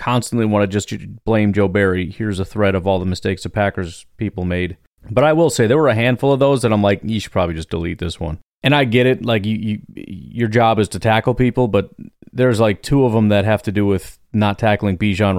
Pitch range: 95-125 Hz